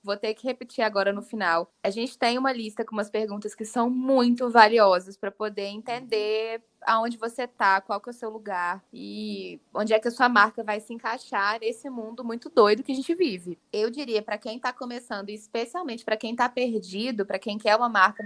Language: Portuguese